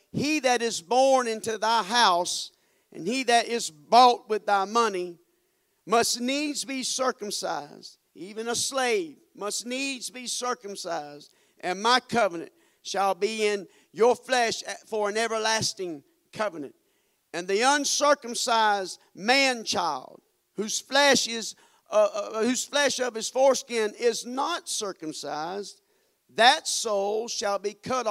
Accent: American